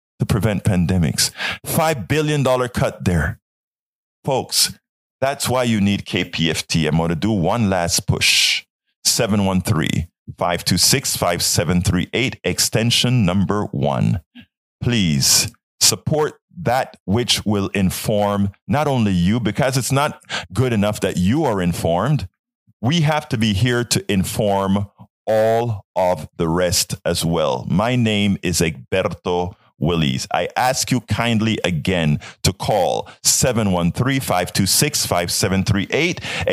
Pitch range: 95-145 Hz